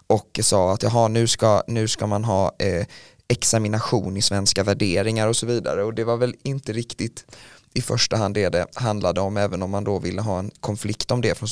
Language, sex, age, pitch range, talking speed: Swedish, male, 20-39, 105-120 Hz, 215 wpm